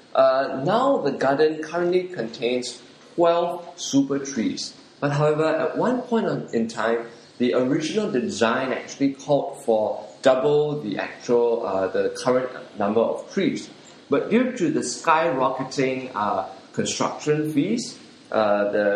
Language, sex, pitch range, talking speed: English, male, 115-155 Hz, 130 wpm